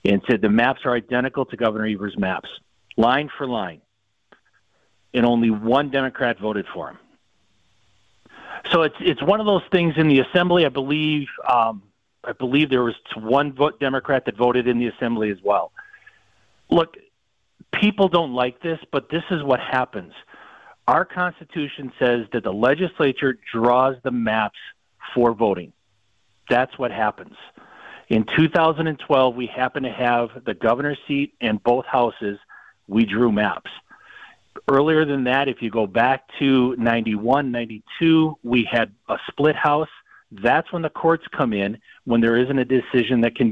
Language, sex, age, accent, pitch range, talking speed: English, male, 50-69, American, 115-160 Hz, 155 wpm